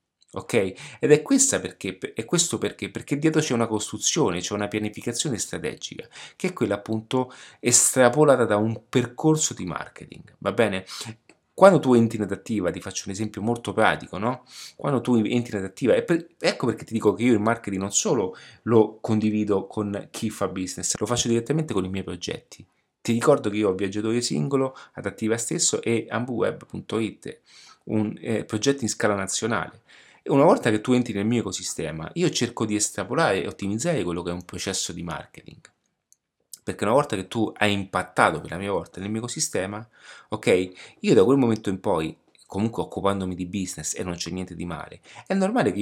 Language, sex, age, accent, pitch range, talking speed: Italian, male, 30-49, native, 100-125 Hz, 185 wpm